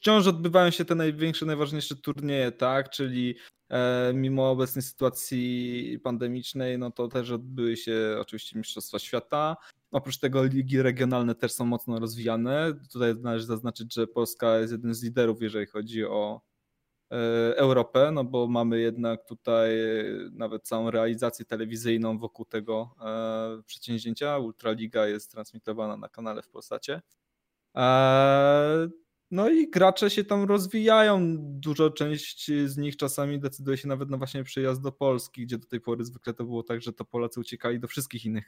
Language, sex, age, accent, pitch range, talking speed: Polish, male, 20-39, native, 115-145 Hz, 155 wpm